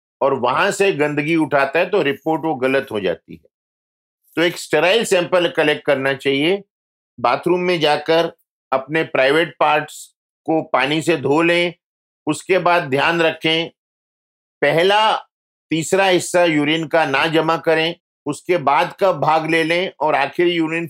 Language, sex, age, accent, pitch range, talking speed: Hindi, male, 50-69, native, 140-175 Hz, 150 wpm